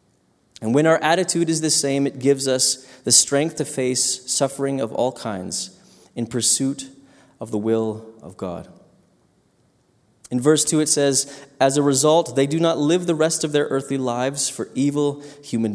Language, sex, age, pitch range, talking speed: English, male, 20-39, 120-150 Hz, 175 wpm